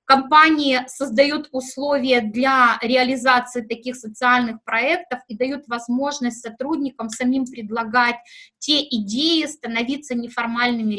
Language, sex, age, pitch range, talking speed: Russian, female, 20-39, 230-275 Hz, 100 wpm